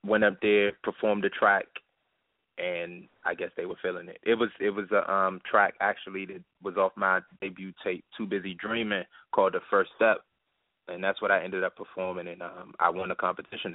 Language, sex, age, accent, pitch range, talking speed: English, male, 20-39, American, 95-110 Hz, 205 wpm